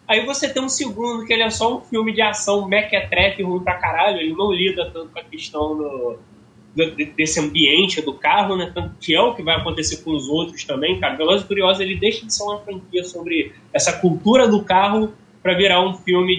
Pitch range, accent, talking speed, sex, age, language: 175-225 Hz, Brazilian, 220 wpm, male, 10-29, Portuguese